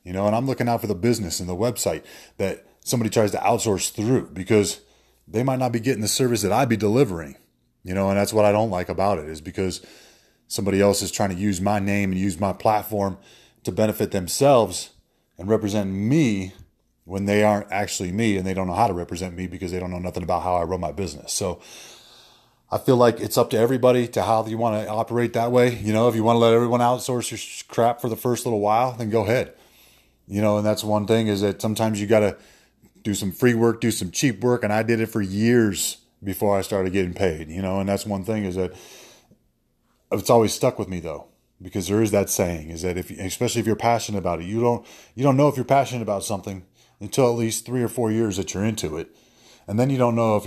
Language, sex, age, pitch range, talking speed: English, male, 30-49, 95-115 Hz, 245 wpm